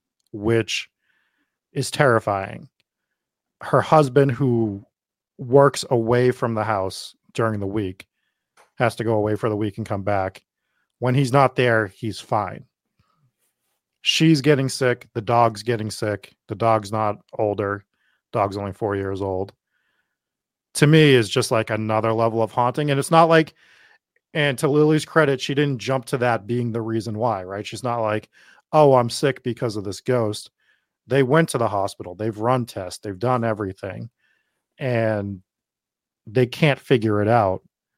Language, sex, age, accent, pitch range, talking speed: English, male, 30-49, American, 105-130 Hz, 160 wpm